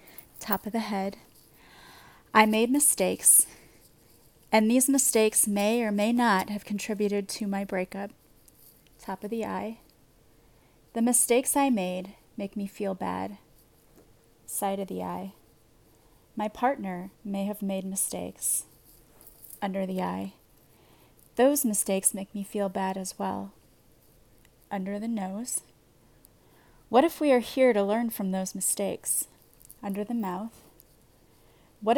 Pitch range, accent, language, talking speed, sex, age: 190-230 Hz, American, English, 130 wpm, female, 30-49